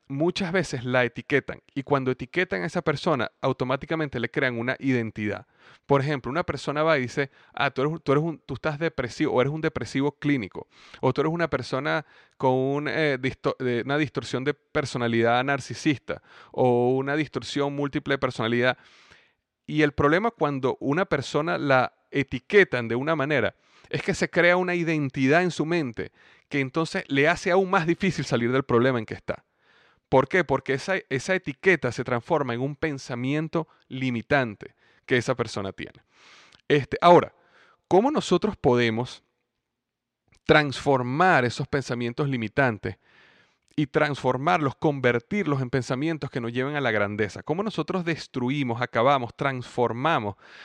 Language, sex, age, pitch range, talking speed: Spanish, male, 30-49, 125-155 Hz, 155 wpm